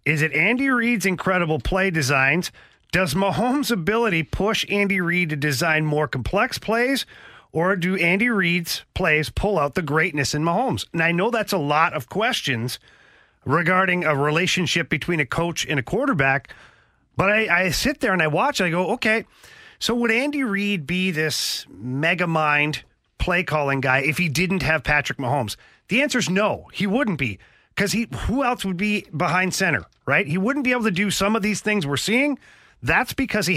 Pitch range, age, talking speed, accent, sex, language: 150-200 Hz, 40-59, 190 wpm, American, male, English